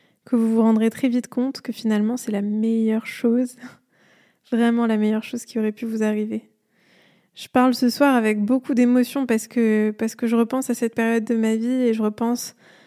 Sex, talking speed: female, 205 wpm